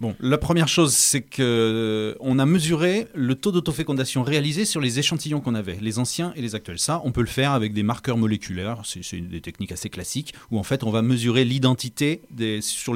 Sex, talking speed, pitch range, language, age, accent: male, 220 wpm, 100-135 Hz, French, 30-49, French